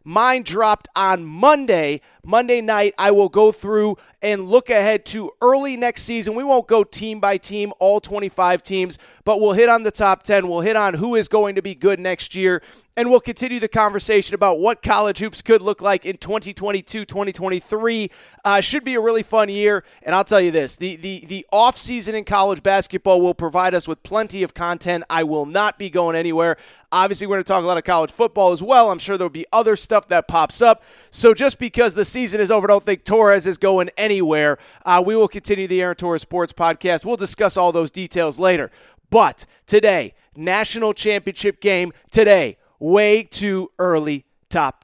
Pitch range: 185-235 Hz